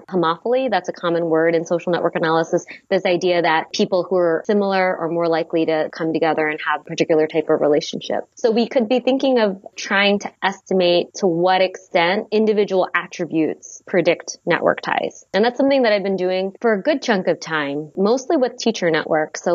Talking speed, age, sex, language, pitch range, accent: 195 wpm, 20-39, female, English, 165-200 Hz, American